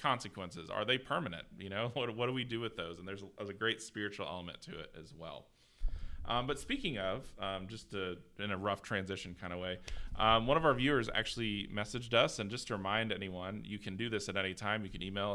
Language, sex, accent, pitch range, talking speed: English, male, American, 90-110 Hz, 240 wpm